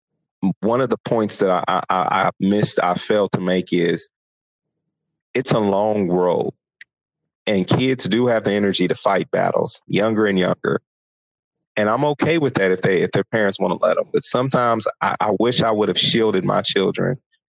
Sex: male